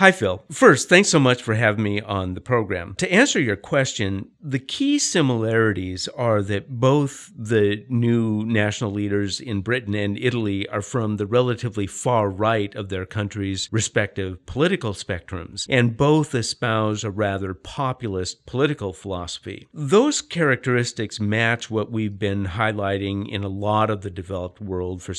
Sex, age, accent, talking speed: male, 50-69, American, 155 wpm